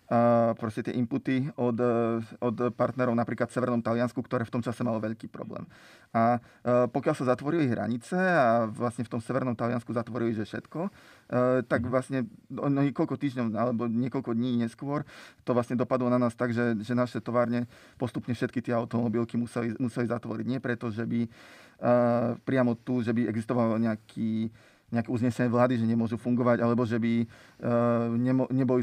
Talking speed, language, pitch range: 165 wpm, Slovak, 115-130 Hz